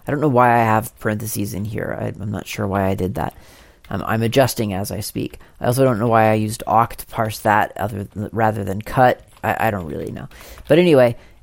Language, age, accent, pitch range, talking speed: English, 40-59, American, 110-140 Hz, 240 wpm